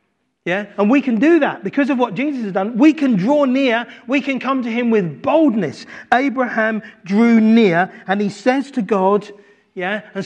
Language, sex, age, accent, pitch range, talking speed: English, male, 40-59, British, 200-255 Hz, 195 wpm